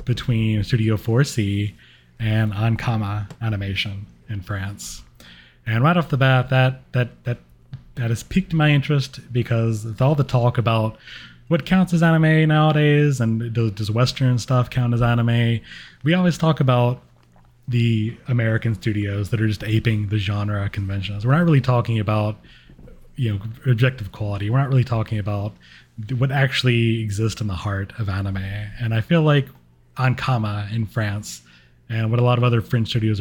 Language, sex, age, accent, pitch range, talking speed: English, male, 20-39, American, 100-125 Hz, 165 wpm